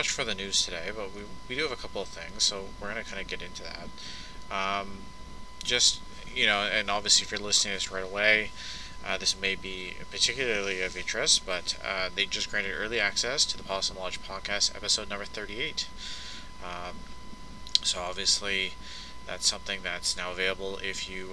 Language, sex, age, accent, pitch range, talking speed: English, male, 20-39, American, 90-100 Hz, 190 wpm